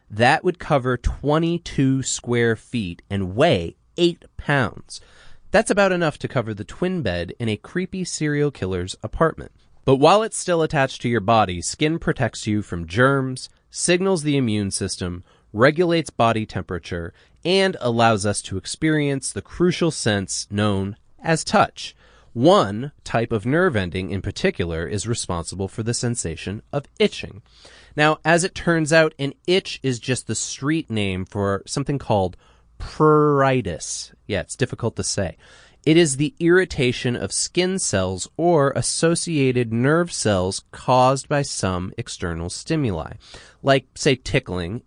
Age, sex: 30-49, male